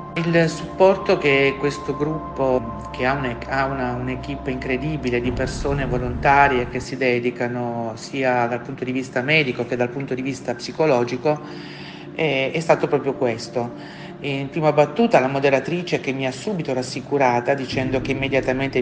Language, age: Italian, 40-59